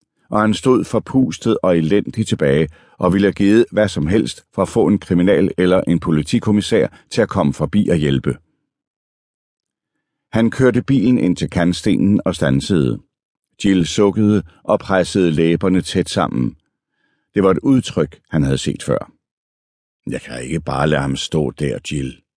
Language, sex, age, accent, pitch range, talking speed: Danish, male, 60-79, native, 80-100 Hz, 160 wpm